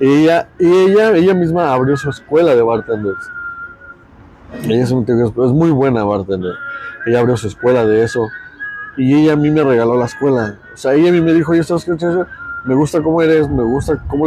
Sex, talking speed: male, 225 wpm